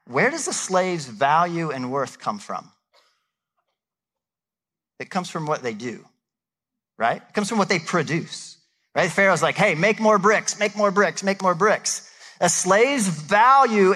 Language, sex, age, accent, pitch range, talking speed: English, male, 40-59, American, 175-225 Hz, 165 wpm